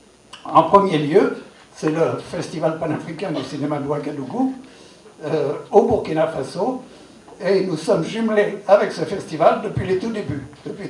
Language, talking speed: English, 150 wpm